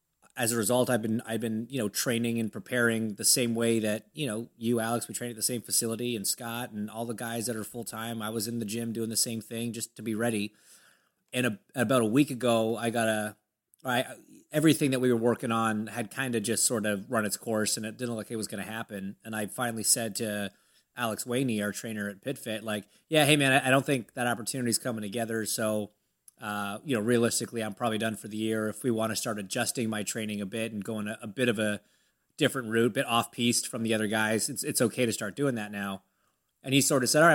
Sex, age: male, 30-49